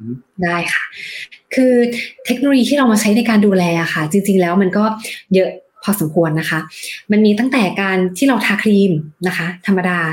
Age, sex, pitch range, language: 20-39, female, 175-215 Hz, Thai